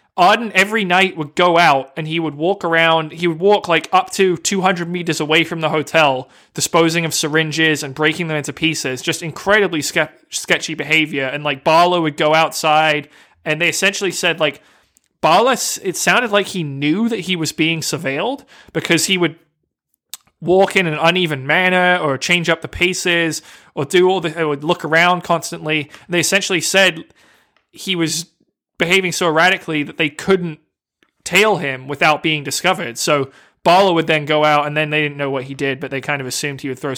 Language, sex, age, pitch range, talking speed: English, male, 20-39, 145-175 Hz, 195 wpm